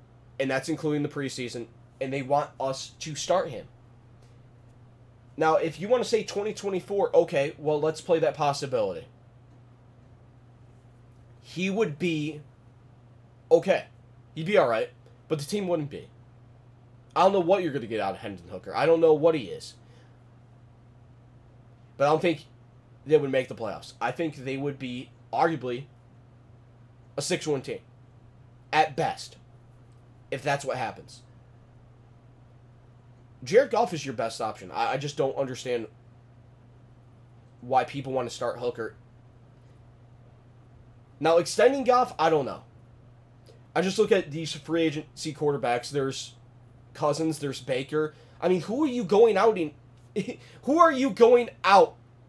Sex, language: male, English